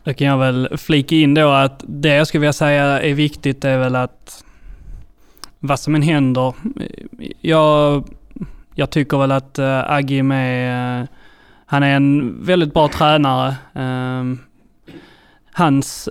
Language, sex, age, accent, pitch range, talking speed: Swedish, male, 20-39, native, 130-150 Hz, 135 wpm